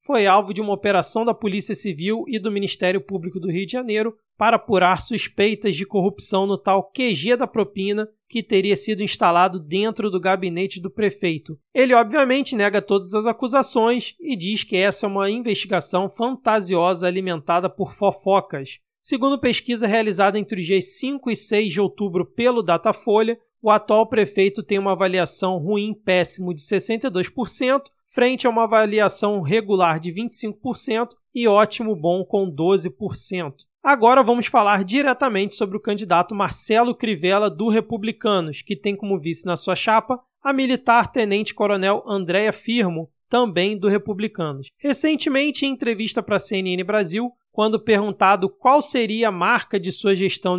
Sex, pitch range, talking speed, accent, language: male, 195-230 Hz, 150 wpm, Brazilian, Portuguese